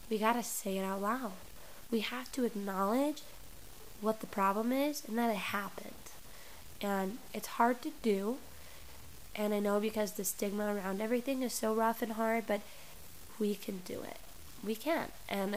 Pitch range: 195-230 Hz